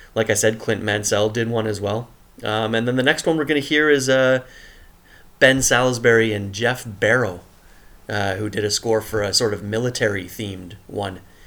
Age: 30-49